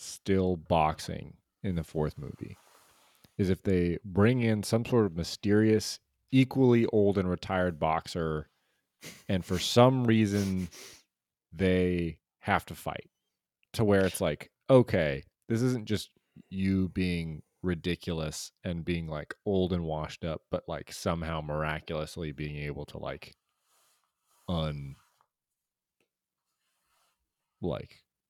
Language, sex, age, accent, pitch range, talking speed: English, male, 30-49, American, 80-100 Hz, 120 wpm